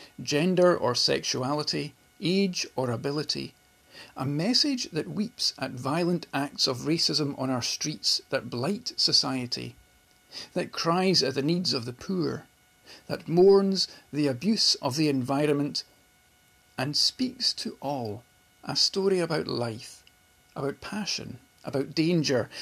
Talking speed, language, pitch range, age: 125 wpm, English, 125-170 Hz, 50-69